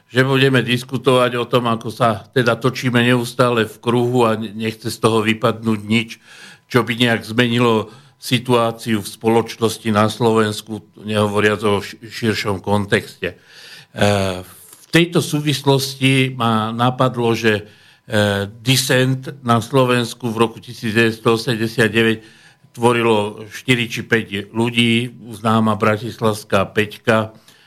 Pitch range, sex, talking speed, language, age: 110-125 Hz, male, 110 wpm, Slovak, 50-69